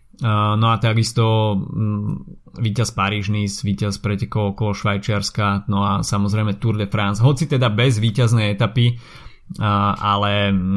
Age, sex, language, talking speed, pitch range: 20-39, male, Slovak, 110 wpm, 105-120 Hz